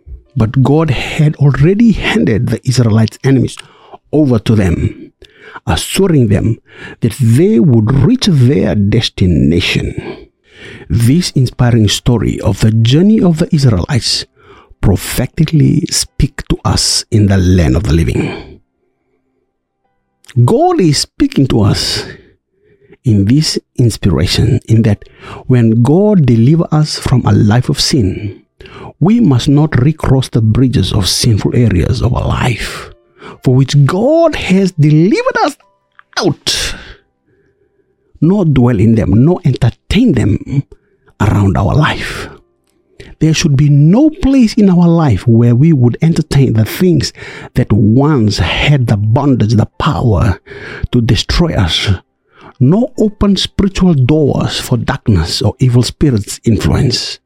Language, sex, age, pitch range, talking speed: English, male, 60-79, 110-160 Hz, 125 wpm